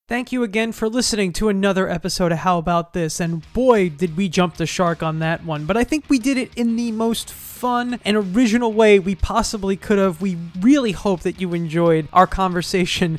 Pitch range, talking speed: 180-230 Hz, 215 wpm